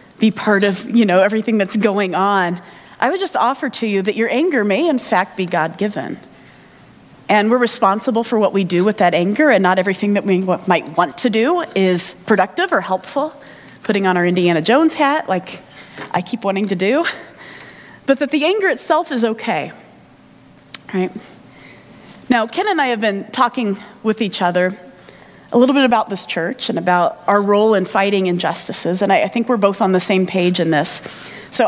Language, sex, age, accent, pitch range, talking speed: English, female, 30-49, American, 180-240 Hz, 195 wpm